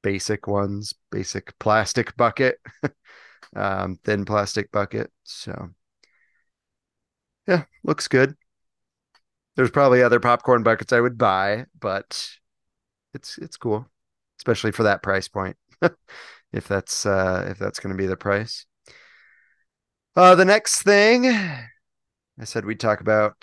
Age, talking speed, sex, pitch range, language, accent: 30-49, 125 wpm, male, 100-120 Hz, English, American